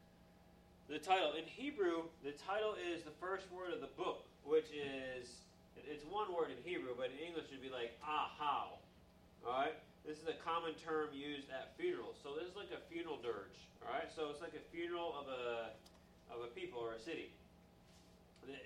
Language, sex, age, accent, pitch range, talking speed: English, male, 30-49, American, 130-160 Hz, 190 wpm